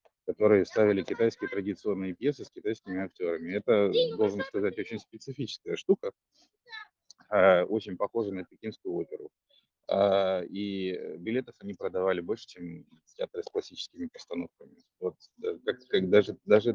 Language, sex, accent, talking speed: Russian, male, native, 120 wpm